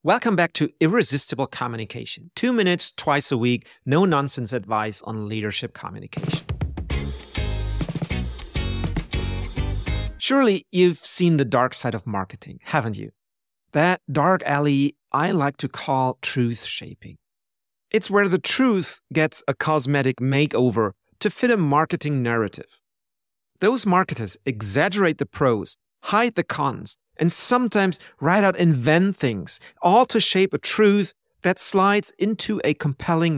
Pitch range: 110-170 Hz